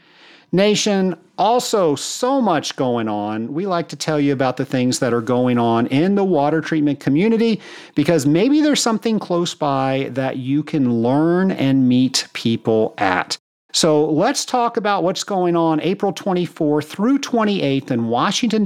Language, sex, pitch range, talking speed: English, male, 135-190 Hz, 160 wpm